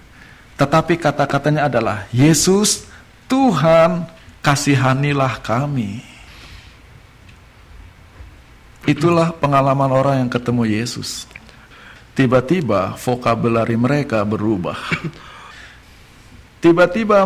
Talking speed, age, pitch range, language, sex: 65 wpm, 50-69, 135-200 Hz, Indonesian, male